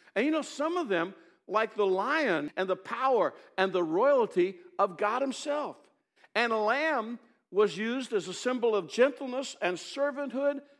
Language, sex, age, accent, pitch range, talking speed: English, male, 60-79, American, 165-220 Hz, 165 wpm